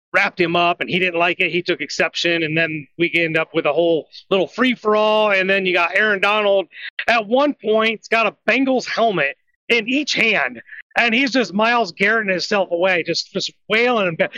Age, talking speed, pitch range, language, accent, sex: 30-49, 210 wpm, 175-230 Hz, English, American, male